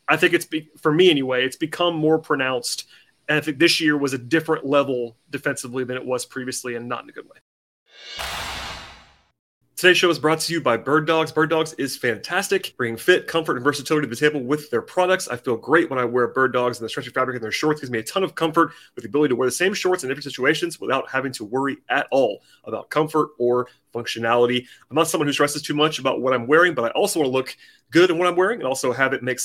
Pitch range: 125-160 Hz